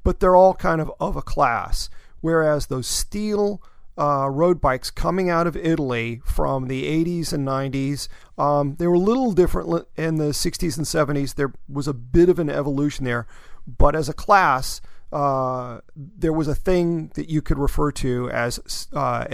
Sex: male